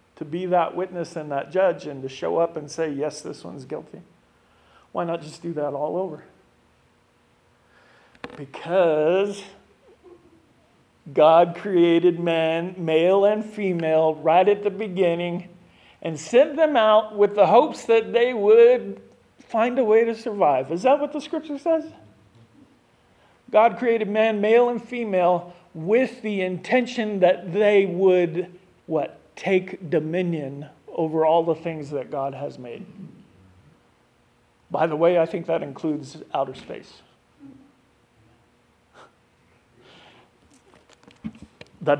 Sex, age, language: male, 50-69, English